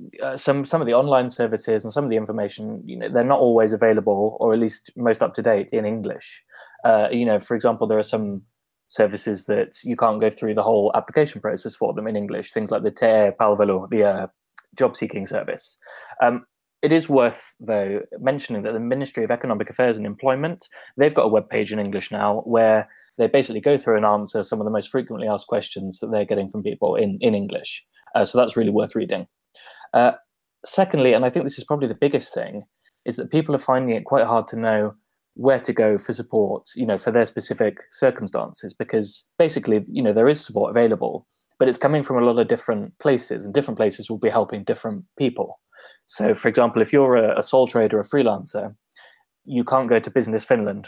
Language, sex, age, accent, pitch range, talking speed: Finnish, male, 20-39, British, 110-130 Hz, 215 wpm